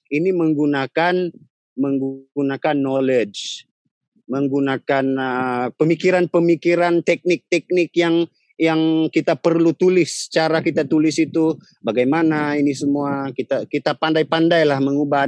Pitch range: 160-200 Hz